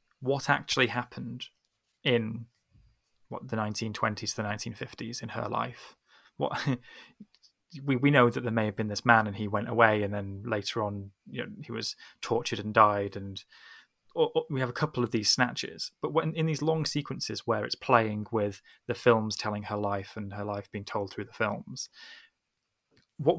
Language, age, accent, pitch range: English, 20-39, British, 105-120 Hz